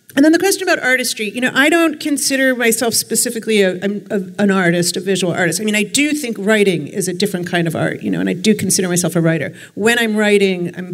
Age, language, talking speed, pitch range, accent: 50-69, English, 245 wpm, 175-210 Hz, American